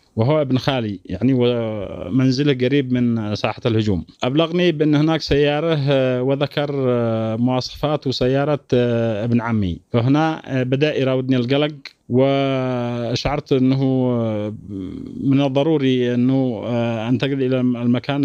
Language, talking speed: Arabic, 100 wpm